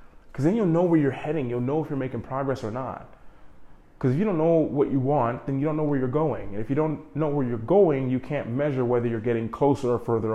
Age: 30-49